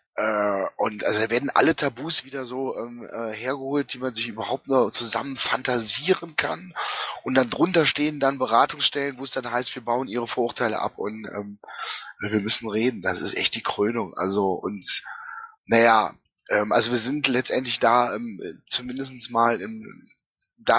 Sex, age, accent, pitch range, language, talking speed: male, 10-29, German, 110-135 Hz, German, 165 wpm